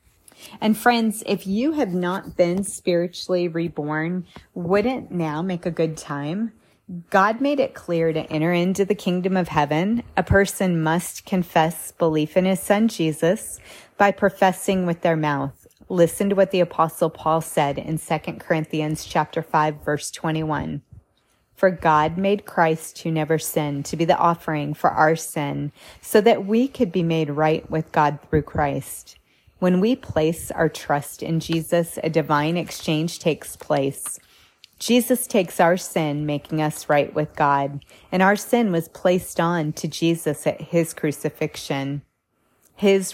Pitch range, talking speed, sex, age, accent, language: 150-185 Hz, 155 wpm, female, 30-49, American, English